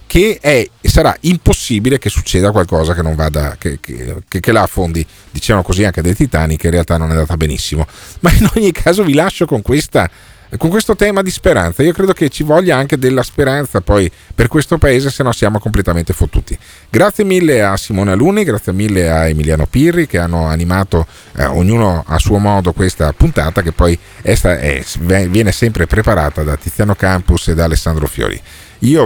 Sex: male